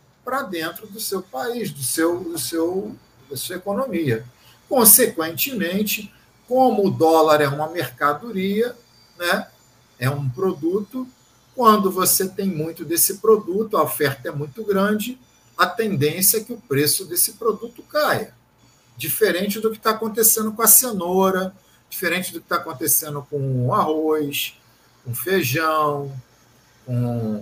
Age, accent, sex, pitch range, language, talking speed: 50-69, Brazilian, male, 145-215 Hz, Portuguese, 140 wpm